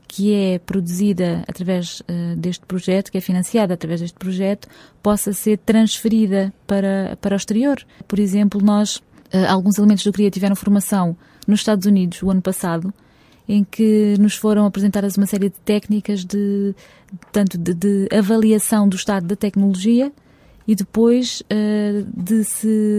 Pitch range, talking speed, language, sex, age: 190-210 Hz, 145 wpm, English, female, 20-39